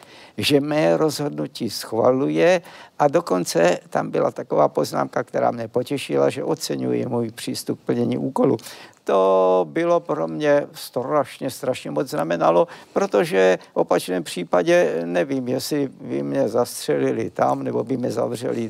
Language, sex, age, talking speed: Czech, male, 60-79, 135 wpm